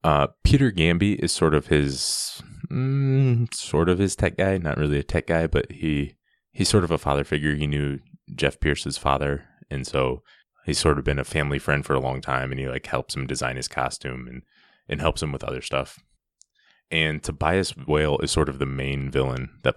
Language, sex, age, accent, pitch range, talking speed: English, male, 20-39, American, 65-80 Hz, 210 wpm